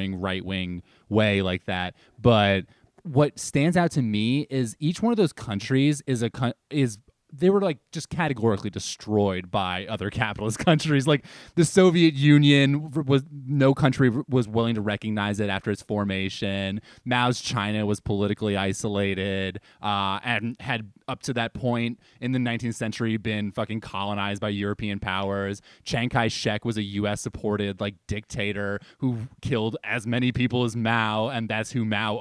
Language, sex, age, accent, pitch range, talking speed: English, male, 20-39, American, 105-125 Hz, 160 wpm